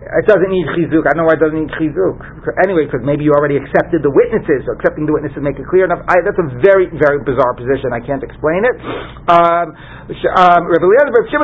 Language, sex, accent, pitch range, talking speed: English, male, American, 145-215 Hz, 210 wpm